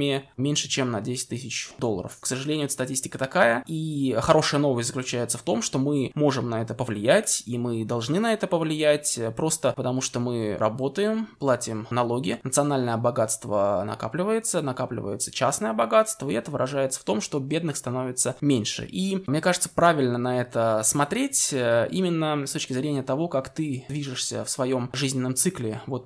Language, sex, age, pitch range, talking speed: Russian, male, 20-39, 120-150 Hz, 160 wpm